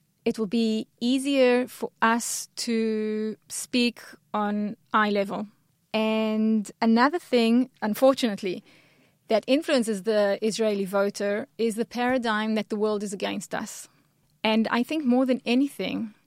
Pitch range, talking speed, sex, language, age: 205-235 Hz, 130 wpm, female, English, 20-39